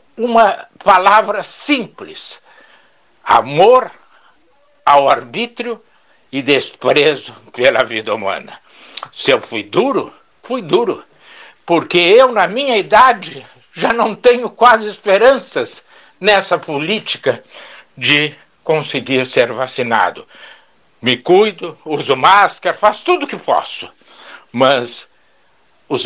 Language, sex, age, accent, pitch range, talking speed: Portuguese, male, 60-79, Brazilian, 140-225 Hz, 100 wpm